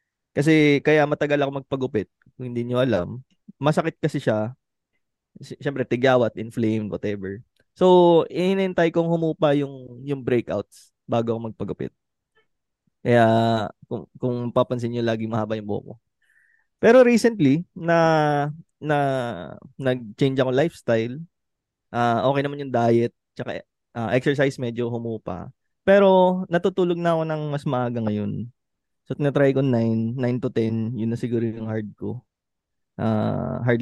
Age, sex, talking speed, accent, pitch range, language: 20-39, male, 135 wpm, native, 115-150 Hz, Filipino